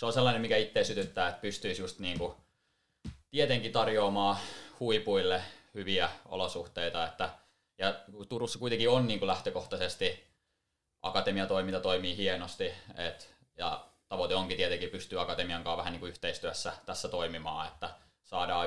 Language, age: Finnish, 20-39